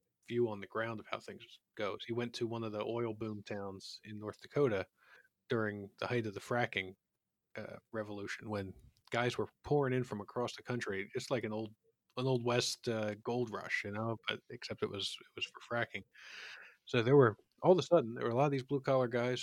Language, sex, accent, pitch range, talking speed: English, male, American, 105-130 Hz, 225 wpm